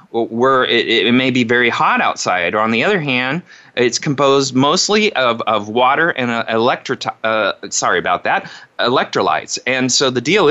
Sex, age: male, 30-49